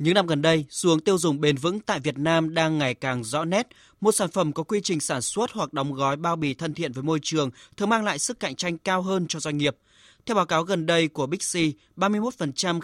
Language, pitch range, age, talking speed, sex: Vietnamese, 125-165 Hz, 20-39, 255 wpm, male